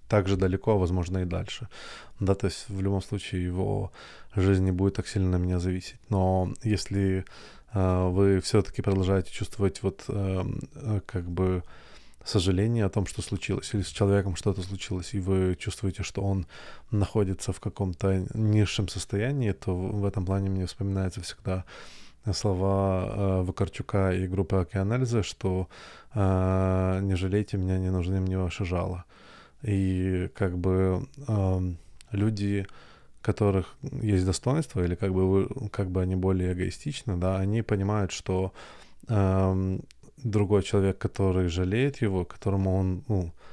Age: 20-39